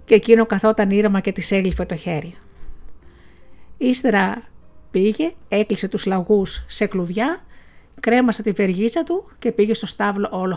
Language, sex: Greek, female